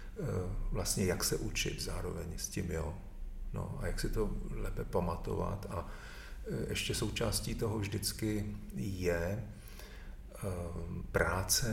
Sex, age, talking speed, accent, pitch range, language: male, 40-59, 105 wpm, native, 95-110 Hz, Czech